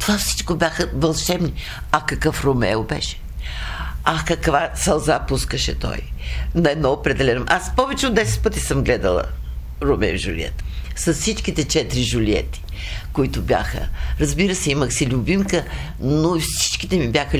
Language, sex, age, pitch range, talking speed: Bulgarian, female, 60-79, 100-165 Hz, 140 wpm